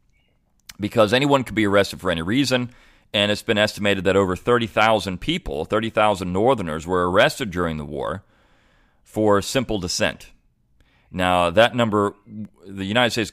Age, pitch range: 40-59, 90-115 Hz